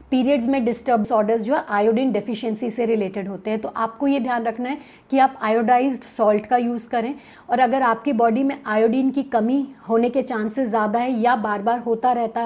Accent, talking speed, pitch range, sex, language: native, 205 wpm, 220-255 Hz, female, Hindi